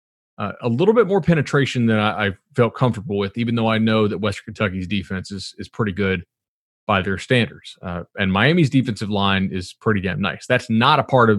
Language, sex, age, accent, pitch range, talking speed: English, male, 30-49, American, 105-130 Hz, 215 wpm